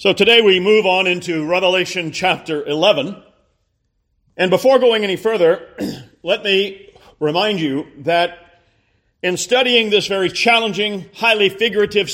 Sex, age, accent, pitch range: male, 40-59, American, 165-225 Hz